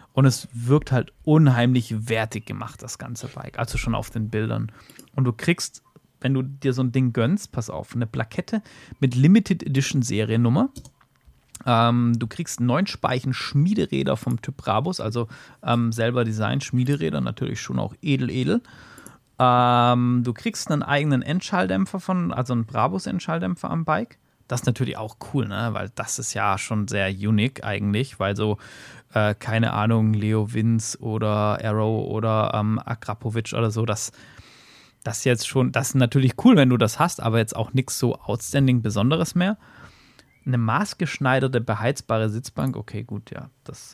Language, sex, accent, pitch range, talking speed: German, male, German, 110-140 Hz, 165 wpm